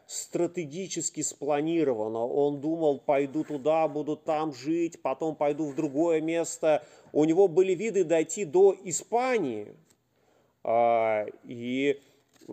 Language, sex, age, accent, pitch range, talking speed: Russian, male, 30-49, native, 140-180 Hz, 105 wpm